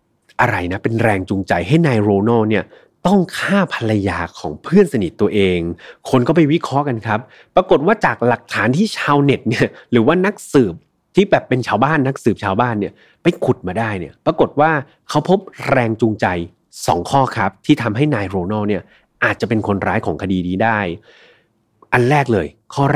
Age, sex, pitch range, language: 30-49, male, 105-145 Hz, Thai